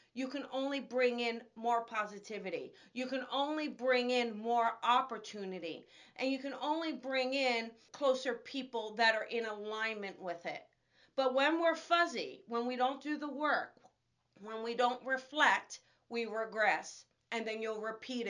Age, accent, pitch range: 40-59, American, 225-275 Hz